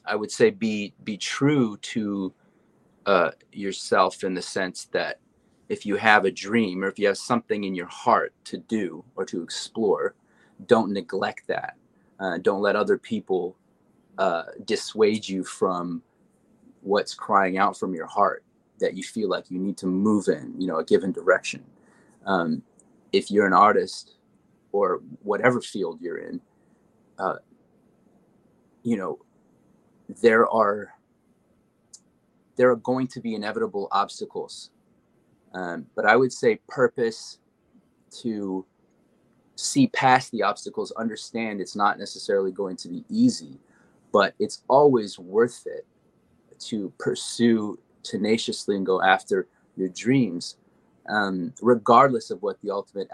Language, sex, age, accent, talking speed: English, male, 30-49, American, 140 wpm